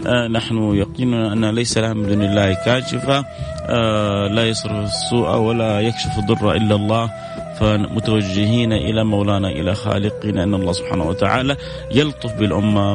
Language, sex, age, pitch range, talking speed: Arabic, male, 30-49, 105-130 Hz, 135 wpm